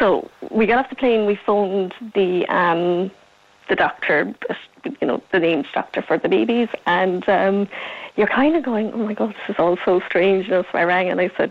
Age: 30-49